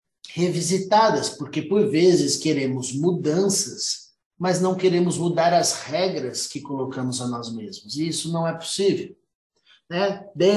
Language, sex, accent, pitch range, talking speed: Portuguese, male, Brazilian, 140-190 Hz, 135 wpm